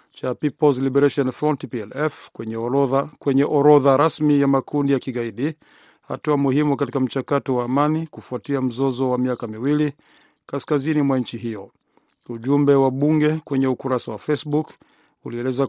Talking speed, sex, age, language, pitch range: 140 wpm, male, 50-69, Swahili, 130-145 Hz